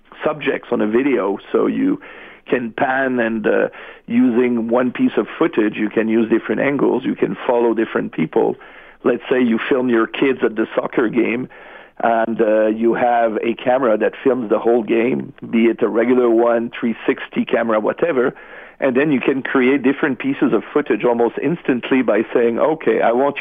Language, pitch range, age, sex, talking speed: English, 115-155 Hz, 50-69, male, 180 wpm